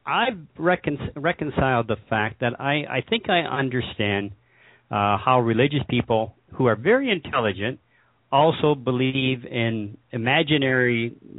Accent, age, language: American, 50-69, English